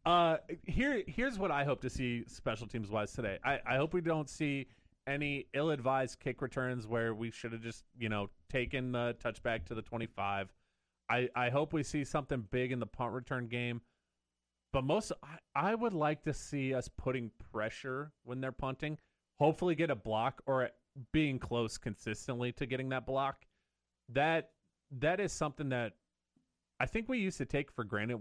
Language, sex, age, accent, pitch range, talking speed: English, male, 30-49, American, 110-135 Hz, 185 wpm